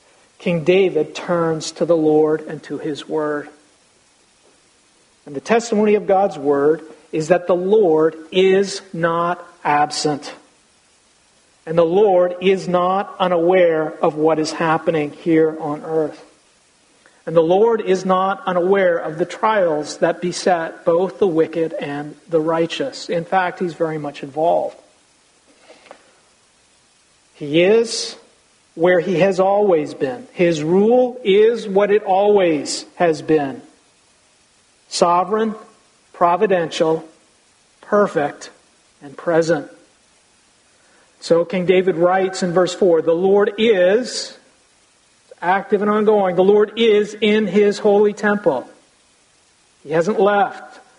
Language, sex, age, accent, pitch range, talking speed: English, male, 50-69, American, 160-200 Hz, 120 wpm